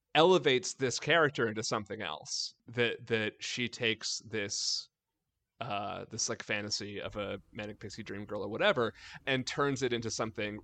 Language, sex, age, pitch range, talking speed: English, male, 30-49, 105-130 Hz, 160 wpm